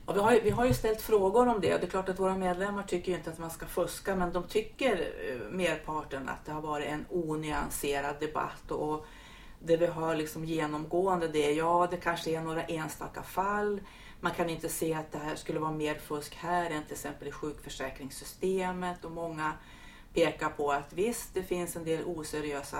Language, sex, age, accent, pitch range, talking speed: Swedish, female, 40-59, native, 150-180 Hz, 210 wpm